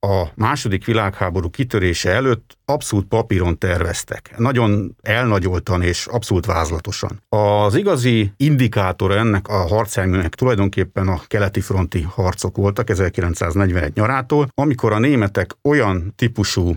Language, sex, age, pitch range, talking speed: Hungarian, male, 50-69, 95-120 Hz, 115 wpm